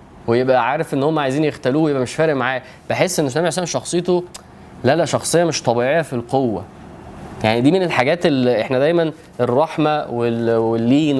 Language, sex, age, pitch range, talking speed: Arabic, male, 20-39, 125-170 Hz, 180 wpm